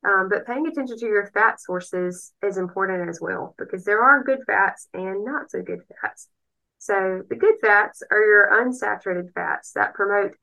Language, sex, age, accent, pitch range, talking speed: English, female, 20-39, American, 185-235 Hz, 185 wpm